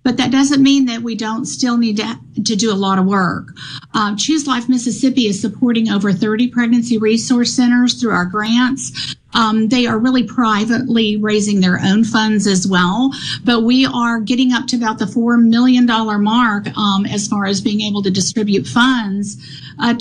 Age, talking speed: 50-69, 185 wpm